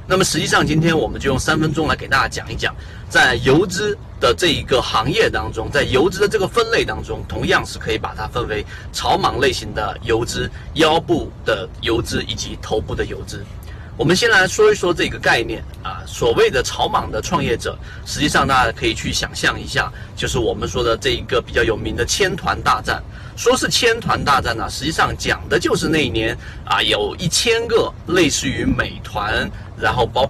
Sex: male